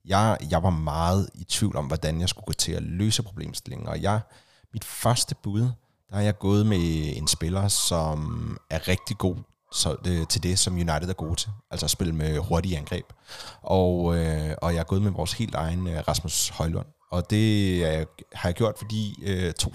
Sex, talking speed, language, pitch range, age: male, 190 wpm, Danish, 85-100 Hz, 30-49